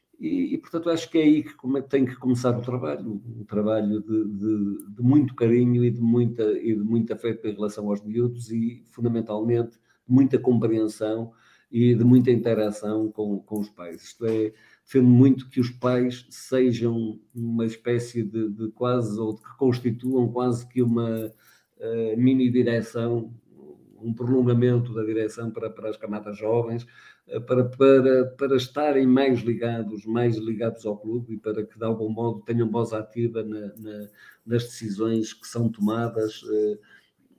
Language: Portuguese